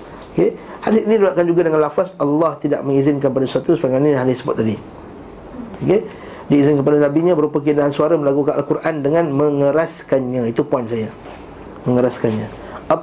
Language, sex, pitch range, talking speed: Malay, male, 145-180 Hz, 140 wpm